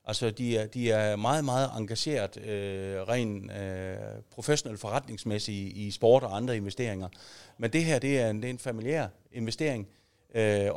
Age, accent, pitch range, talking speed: 40-59, native, 105-140 Hz, 175 wpm